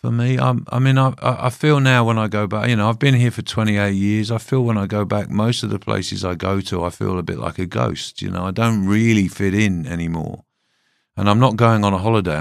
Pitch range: 80-110 Hz